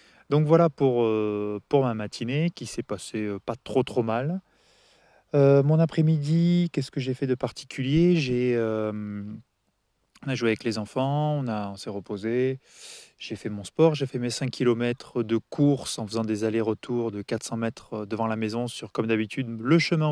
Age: 20-39